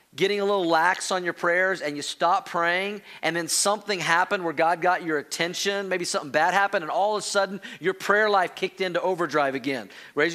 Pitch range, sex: 170-200 Hz, male